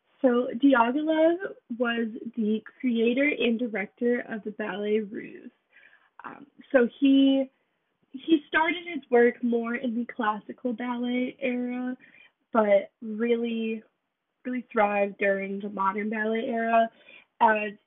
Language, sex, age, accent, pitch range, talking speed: English, female, 20-39, American, 210-265 Hz, 115 wpm